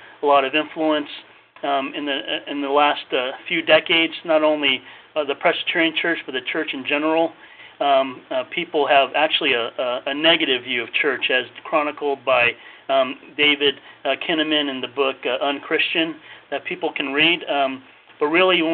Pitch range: 140-165 Hz